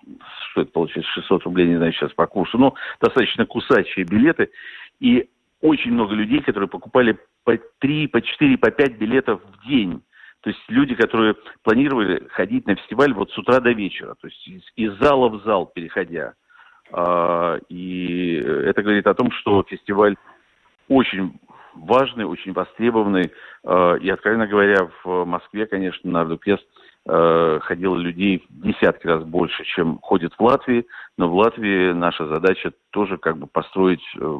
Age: 50-69